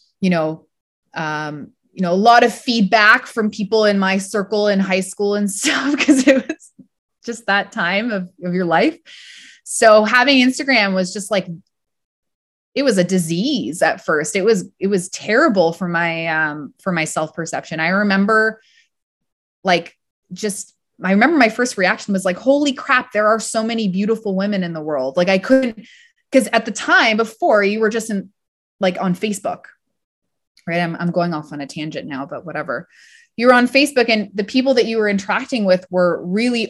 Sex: female